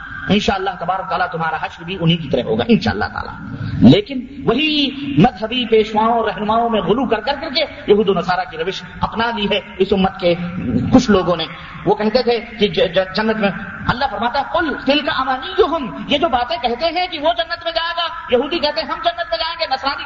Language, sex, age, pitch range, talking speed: Urdu, male, 40-59, 215-330 Hz, 215 wpm